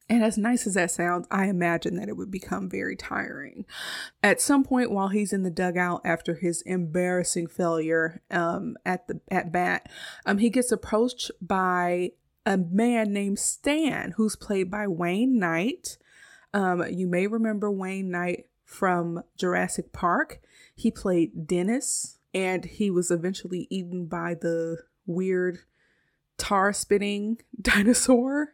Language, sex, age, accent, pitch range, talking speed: English, female, 20-39, American, 175-225 Hz, 145 wpm